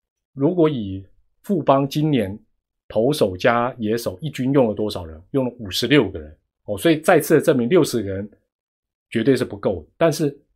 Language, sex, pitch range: Chinese, male, 100-145 Hz